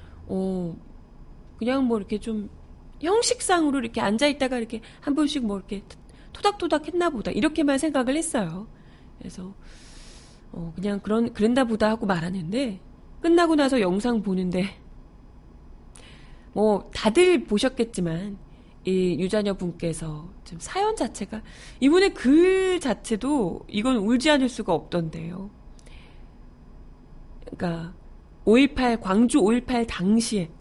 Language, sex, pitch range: Korean, female, 185-275 Hz